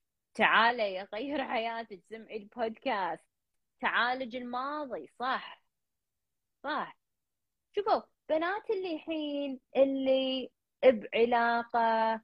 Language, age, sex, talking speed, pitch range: Arabic, 20-39, female, 75 wpm, 210-270 Hz